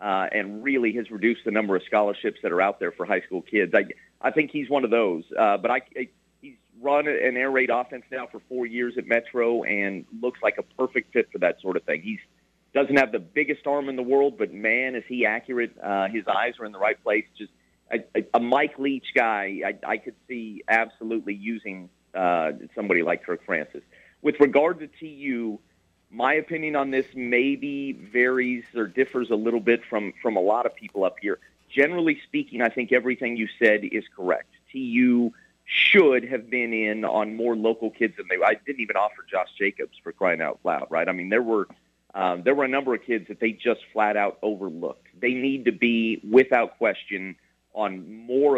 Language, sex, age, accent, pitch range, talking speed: English, male, 40-59, American, 105-140 Hz, 210 wpm